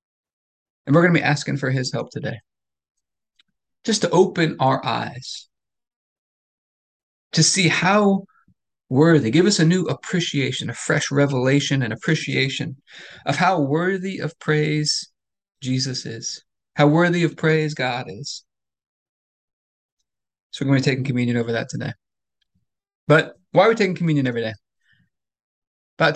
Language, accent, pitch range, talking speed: English, American, 130-155 Hz, 140 wpm